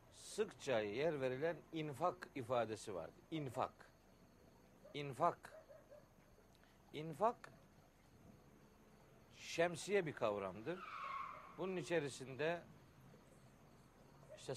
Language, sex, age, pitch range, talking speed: Turkish, male, 60-79, 115-175 Hz, 60 wpm